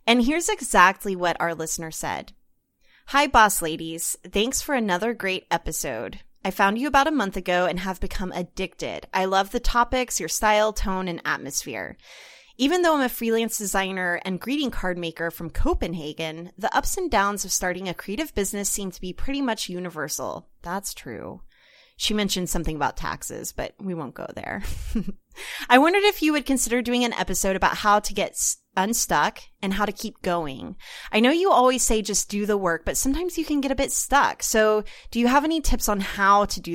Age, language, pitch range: 20-39, English, 180-240 Hz